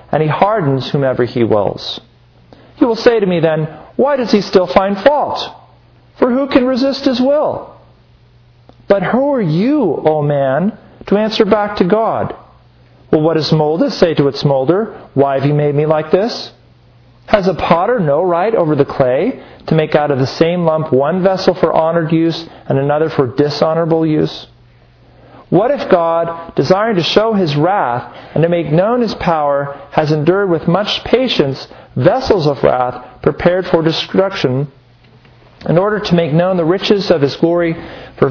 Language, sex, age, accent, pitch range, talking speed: English, male, 40-59, American, 140-190 Hz, 175 wpm